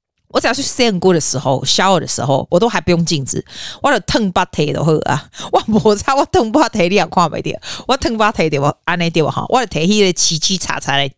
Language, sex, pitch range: Chinese, female, 155-225 Hz